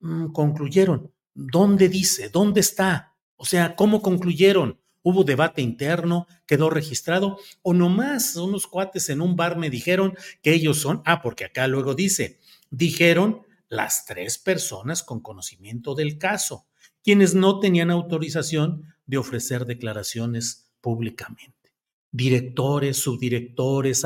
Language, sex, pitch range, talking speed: Spanish, male, 130-185 Hz, 120 wpm